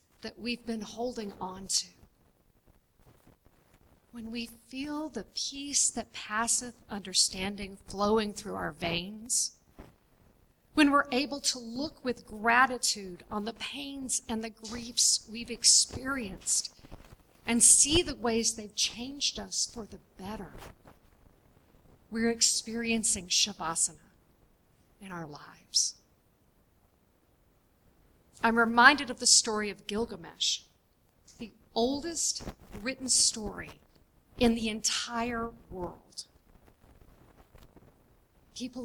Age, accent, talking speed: 50-69, American, 100 wpm